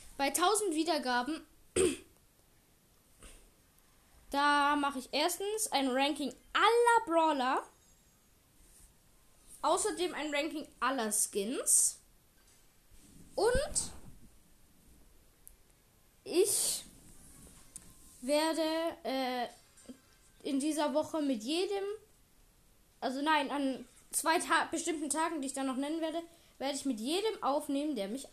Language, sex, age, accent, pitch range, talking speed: German, female, 10-29, German, 250-325 Hz, 95 wpm